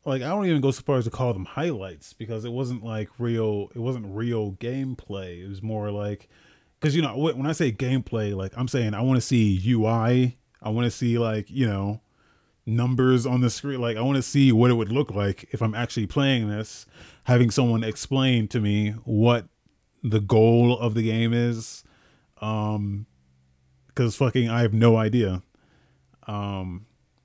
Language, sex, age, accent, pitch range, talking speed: English, male, 30-49, American, 105-125 Hz, 190 wpm